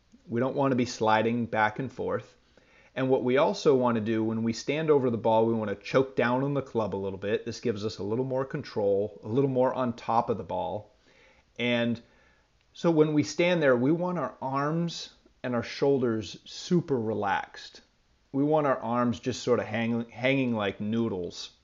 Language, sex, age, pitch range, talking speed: English, male, 30-49, 115-140 Hz, 205 wpm